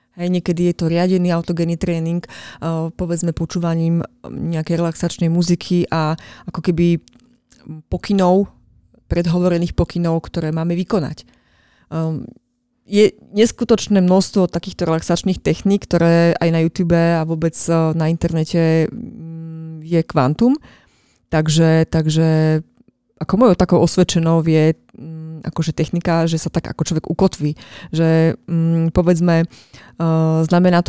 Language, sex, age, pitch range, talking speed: Slovak, female, 20-39, 160-180 Hz, 105 wpm